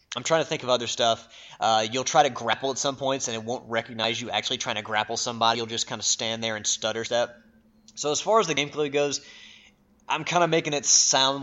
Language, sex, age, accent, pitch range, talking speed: English, male, 20-39, American, 115-140 Hz, 245 wpm